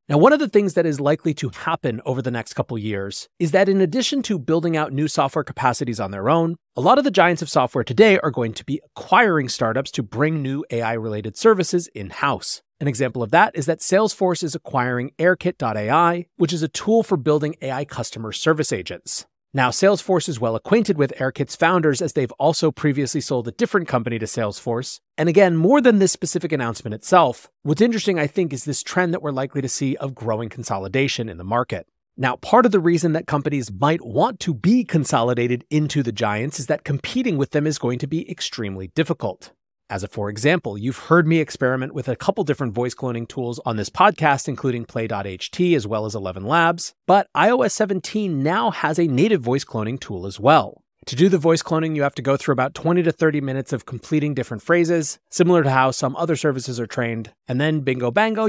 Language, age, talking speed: English, 30-49, 210 wpm